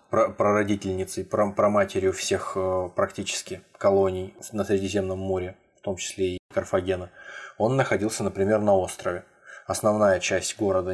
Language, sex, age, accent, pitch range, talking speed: Russian, male, 20-39, native, 95-110 Hz, 125 wpm